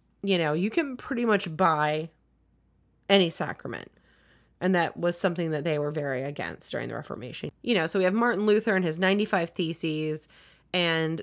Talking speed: 175 wpm